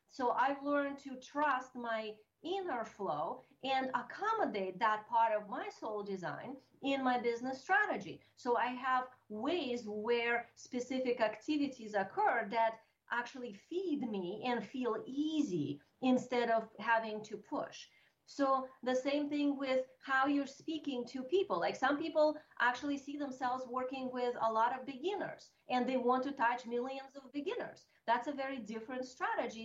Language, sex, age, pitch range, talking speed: English, female, 30-49, 220-270 Hz, 150 wpm